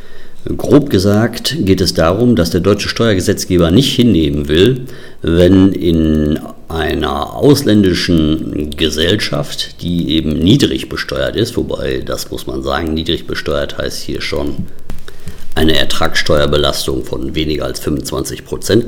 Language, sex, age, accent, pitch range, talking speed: German, male, 50-69, German, 80-105 Hz, 120 wpm